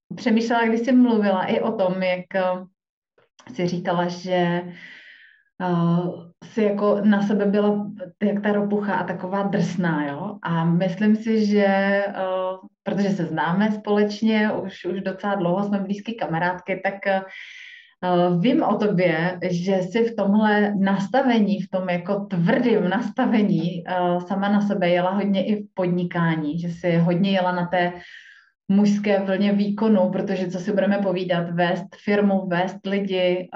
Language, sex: Czech, female